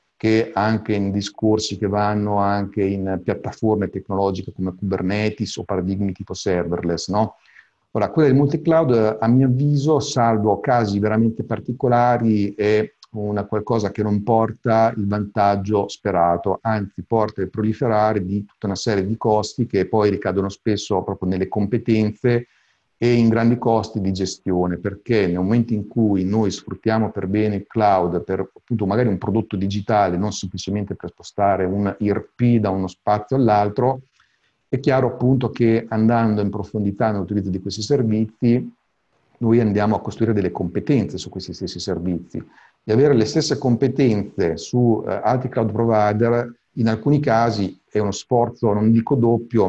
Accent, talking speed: native, 155 wpm